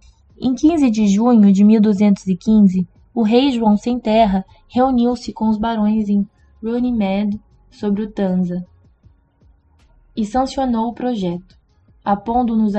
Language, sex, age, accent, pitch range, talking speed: Portuguese, female, 20-39, Brazilian, 200-235 Hz, 125 wpm